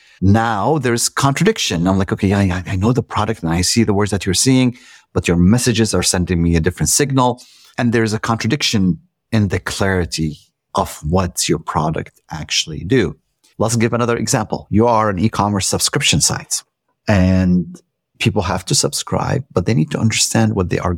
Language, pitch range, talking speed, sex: English, 95-130 Hz, 185 wpm, male